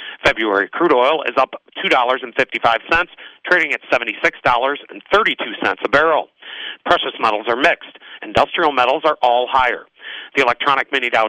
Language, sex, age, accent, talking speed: English, male, 40-59, American, 130 wpm